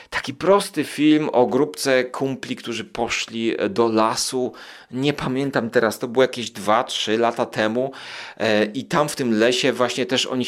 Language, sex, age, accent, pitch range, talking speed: Polish, male, 30-49, native, 125-155 Hz, 155 wpm